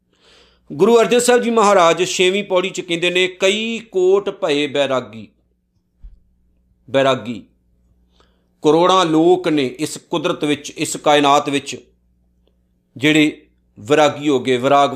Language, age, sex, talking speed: Punjabi, 50-69, male, 115 wpm